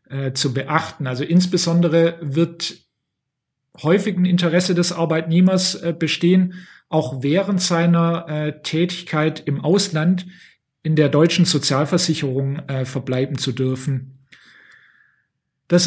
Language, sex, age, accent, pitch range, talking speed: German, male, 40-59, German, 145-175 Hz, 95 wpm